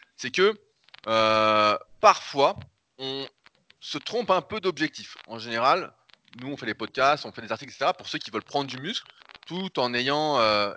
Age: 30-49